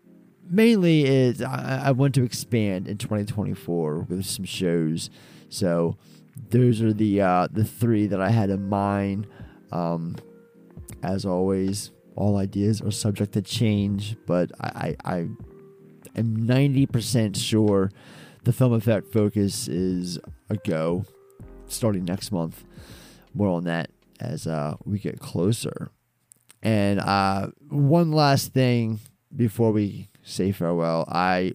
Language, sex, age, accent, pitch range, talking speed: English, male, 20-39, American, 95-125 Hz, 135 wpm